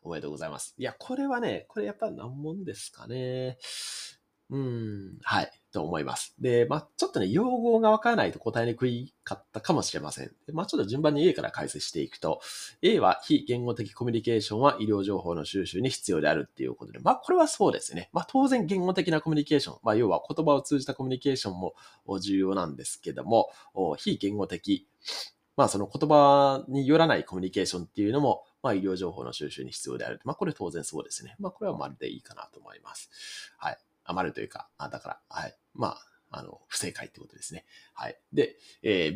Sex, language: male, Japanese